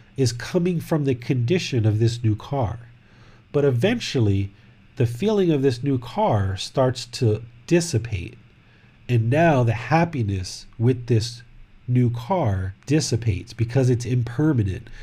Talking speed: 130 wpm